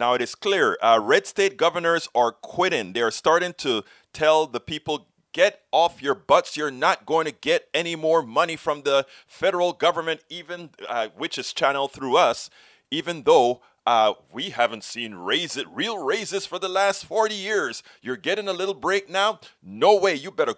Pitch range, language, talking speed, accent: 160-215 Hz, English, 185 wpm, American